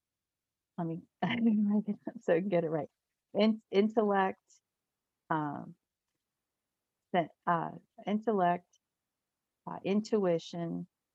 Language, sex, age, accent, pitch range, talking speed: English, female, 50-69, American, 165-205 Hz, 80 wpm